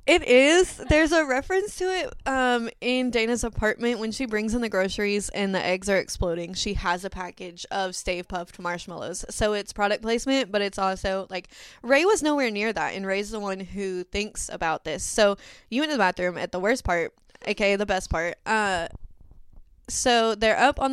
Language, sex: English, female